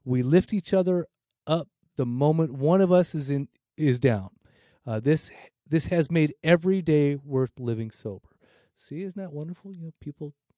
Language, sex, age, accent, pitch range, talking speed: English, male, 30-49, American, 125-170 Hz, 175 wpm